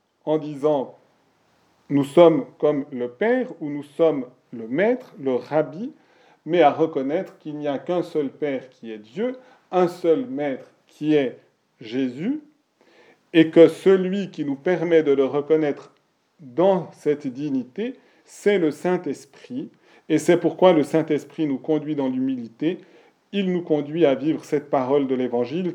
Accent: French